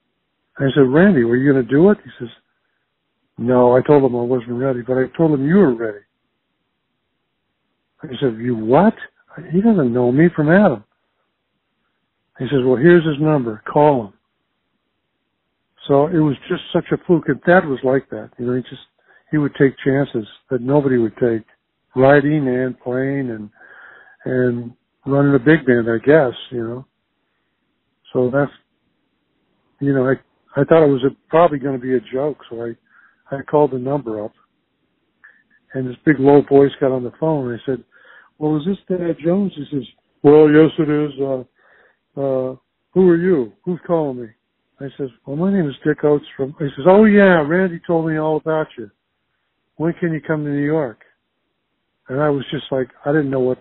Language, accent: English, American